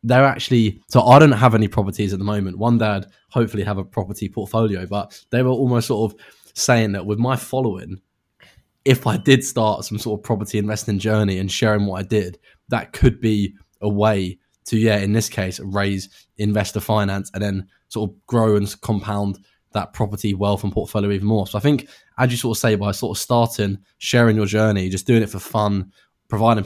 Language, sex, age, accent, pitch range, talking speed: English, male, 10-29, British, 100-115 Hz, 205 wpm